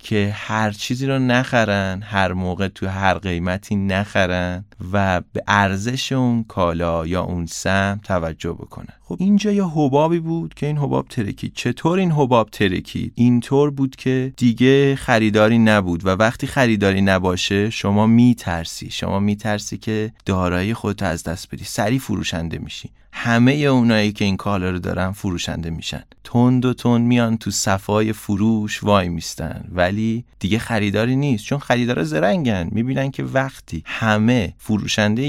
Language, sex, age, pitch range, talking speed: Persian, male, 30-49, 95-130 Hz, 150 wpm